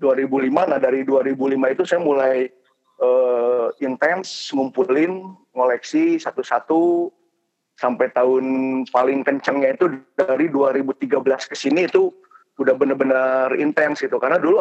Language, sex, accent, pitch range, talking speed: Indonesian, male, native, 130-195 Hz, 120 wpm